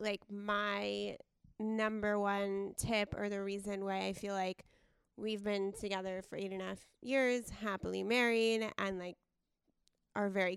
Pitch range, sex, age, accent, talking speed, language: 190-215 Hz, female, 20-39, American, 155 wpm, English